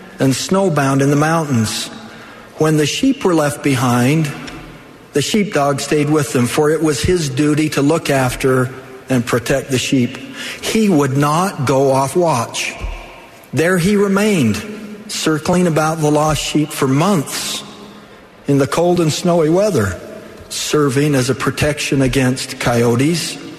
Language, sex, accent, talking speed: English, male, American, 140 wpm